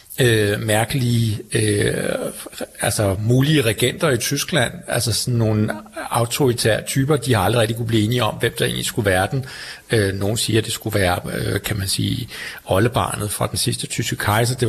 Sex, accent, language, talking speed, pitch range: male, native, Danish, 185 wpm, 105-130 Hz